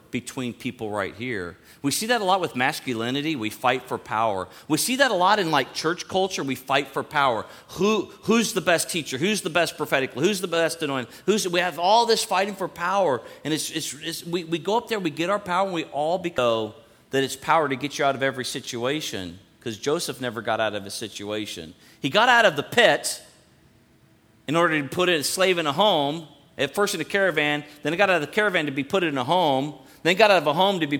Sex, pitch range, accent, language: male, 125-175 Hz, American, English